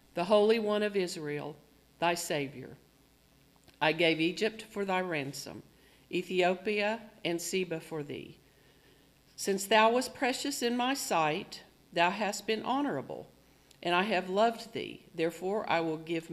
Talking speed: 140 wpm